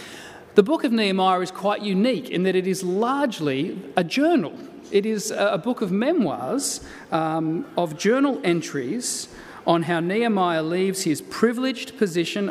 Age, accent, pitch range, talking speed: 30-49, Australian, 170-215 Hz, 150 wpm